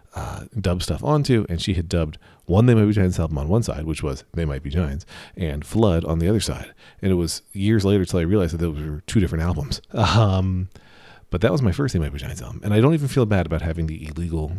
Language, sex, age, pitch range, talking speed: English, male, 40-59, 85-110 Hz, 265 wpm